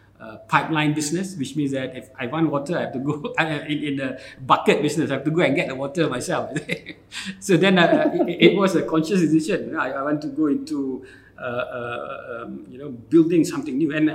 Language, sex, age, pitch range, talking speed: English, male, 50-69, 120-155 Hz, 225 wpm